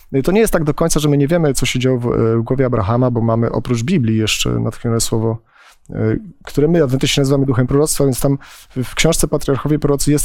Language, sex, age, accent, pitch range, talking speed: Polish, male, 40-59, native, 115-140 Hz, 240 wpm